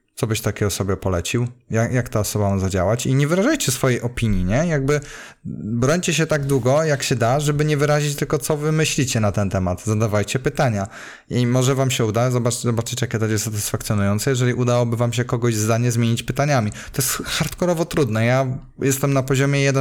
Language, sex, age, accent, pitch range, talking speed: Polish, male, 20-39, native, 110-135 Hz, 195 wpm